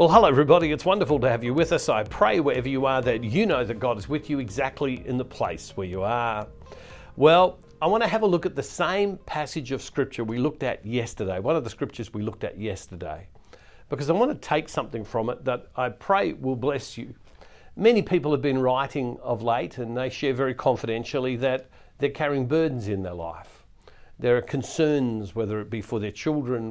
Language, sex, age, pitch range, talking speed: English, male, 50-69, 110-140 Hz, 220 wpm